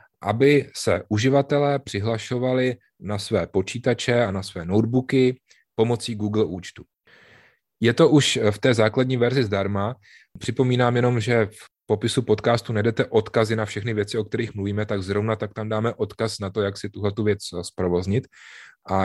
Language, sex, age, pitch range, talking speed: Czech, male, 30-49, 100-125 Hz, 160 wpm